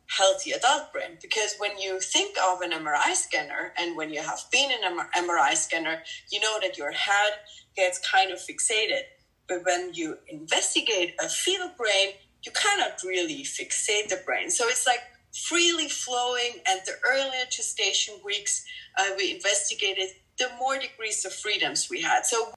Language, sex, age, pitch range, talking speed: English, female, 30-49, 190-285 Hz, 170 wpm